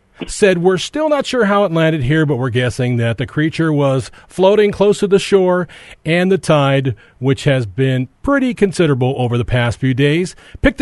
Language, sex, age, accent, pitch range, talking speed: English, male, 40-59, American, 140-200 Hz, 195 wpm